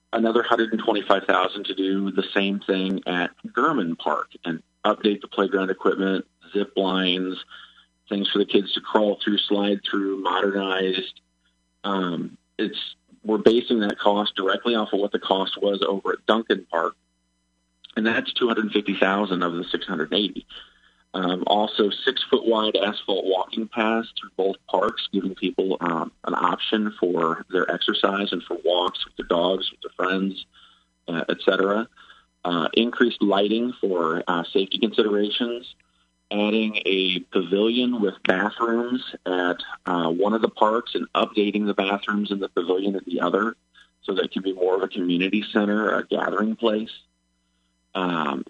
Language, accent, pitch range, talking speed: English, American, 90-110 Hz, 160 wpm